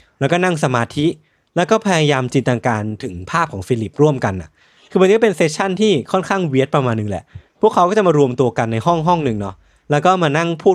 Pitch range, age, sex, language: 115-170 Hz, 20-39, male, Thai